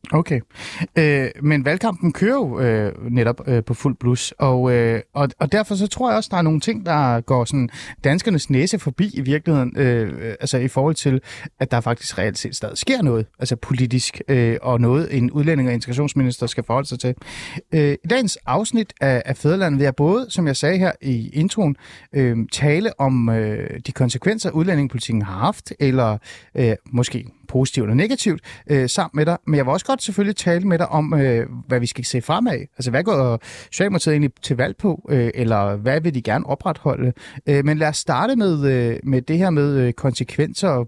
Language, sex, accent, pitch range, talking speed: Danish, male, native, 125-160 Hz, 200 wpm